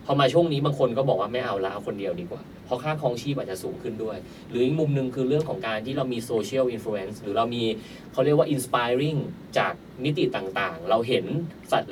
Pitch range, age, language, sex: 120-160 Hz, 20-39, Thai, male